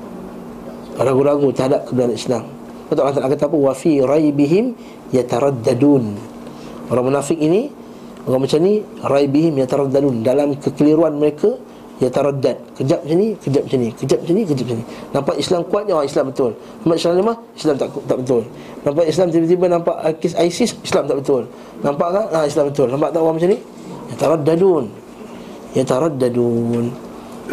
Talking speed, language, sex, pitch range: 155 wpm, Malay, male, 135-170 Hz